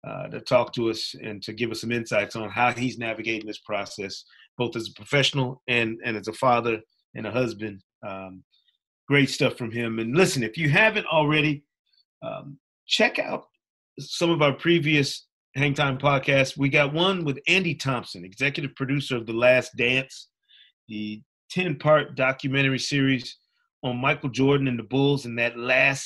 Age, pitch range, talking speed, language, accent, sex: 30-49, 120-145 Hz, 170 wpm, English, American, male